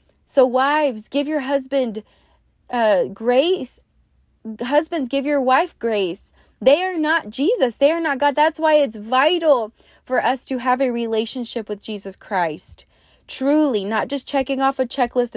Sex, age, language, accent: female, 20-39, English, American